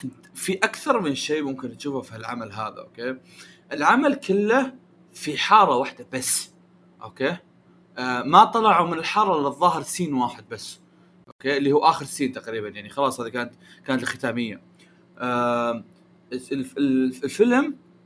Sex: male